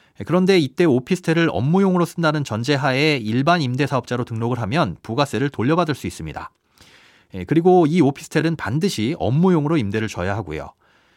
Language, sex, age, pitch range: Korean, male, 30-49, 115-170 Hz